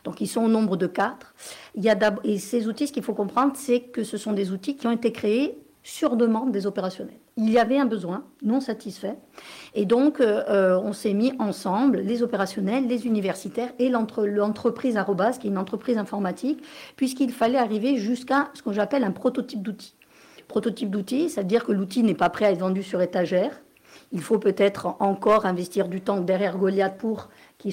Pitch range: 200-250 Hz